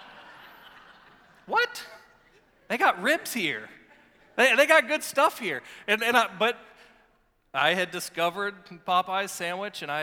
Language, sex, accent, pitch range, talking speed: English, male, American, 160-220 Hz, 130 wpm